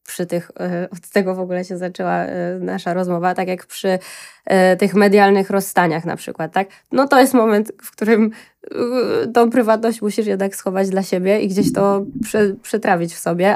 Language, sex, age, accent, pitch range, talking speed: Polish, female, 20-39, native, 175-205 Hz, 170 wpm